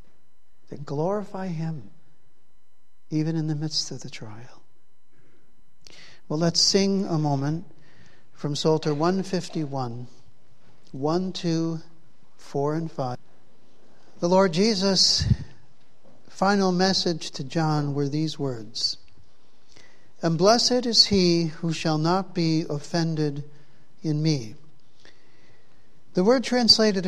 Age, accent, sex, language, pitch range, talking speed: 60-79, American, male, English, 150-200 Hz, 105 wpm